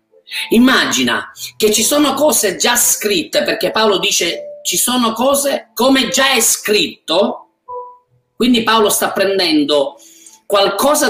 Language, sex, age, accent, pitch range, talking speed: Italian, male, 40-59, native, 180-275 Hz, 120 wpm